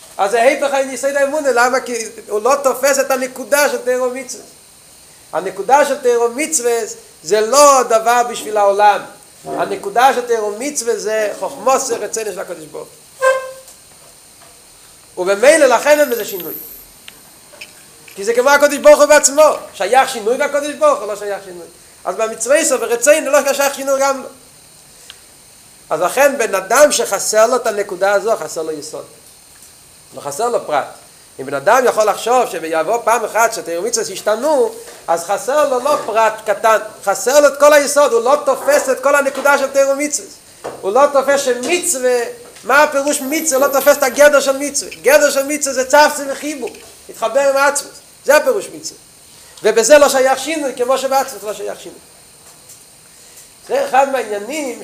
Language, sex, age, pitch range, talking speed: Hebrew, male, 40-59, 225-290 Hz, 105 wpm